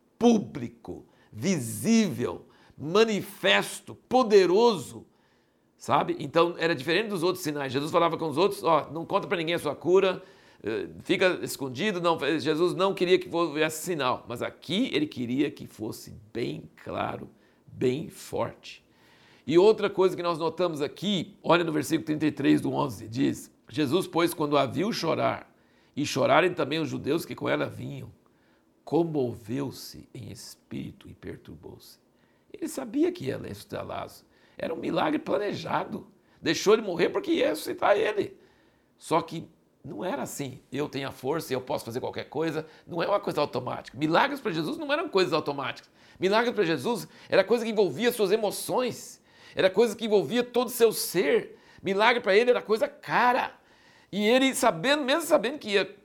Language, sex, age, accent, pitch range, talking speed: Portuguese, male, 60-79, Brazilian, 150-220 Hz, 160 wpm